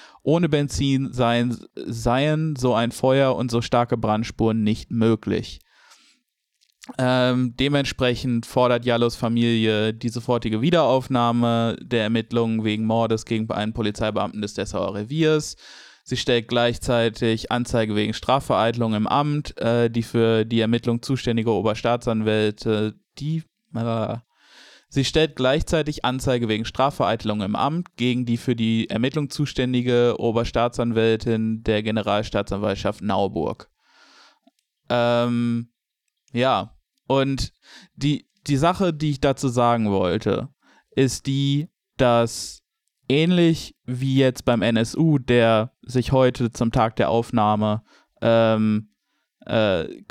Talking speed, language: 110 wpm, German